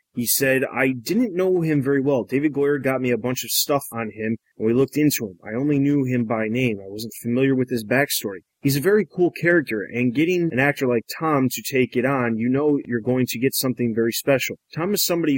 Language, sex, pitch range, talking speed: English, male, 115-140 Hz, 240 wpm